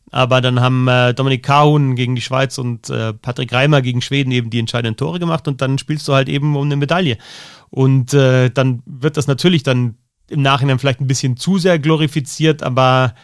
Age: 30-49